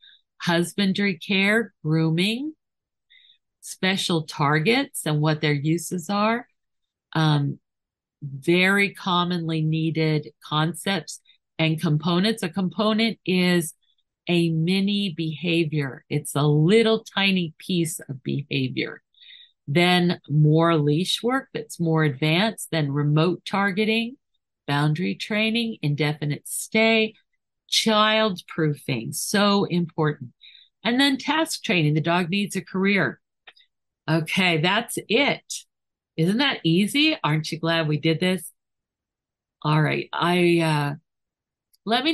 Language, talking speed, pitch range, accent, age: English, 105 wpm, 155-205 Hz, American, 50-69